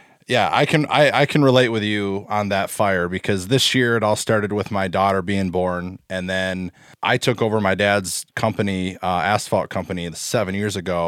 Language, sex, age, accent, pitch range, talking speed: English, male, 20-39, American, 90-115 Hz, 200 wpm